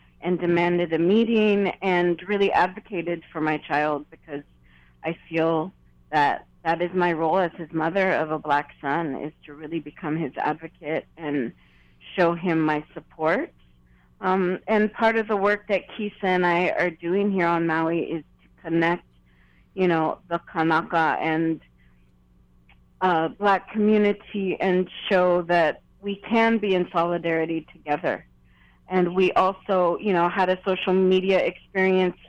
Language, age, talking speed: English, 30-49, 150 wpm